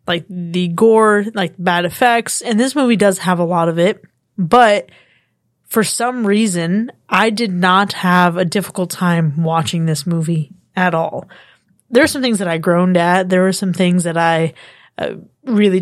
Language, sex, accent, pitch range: English, female, American, 175-220 Hz